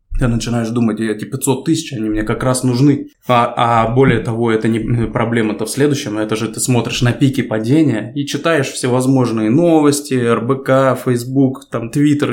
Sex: male